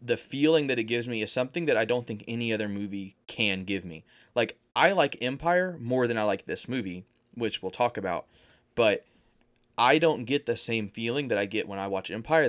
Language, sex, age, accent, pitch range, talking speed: English, male, 20-39, American, 105-130 Hz, 220 wpm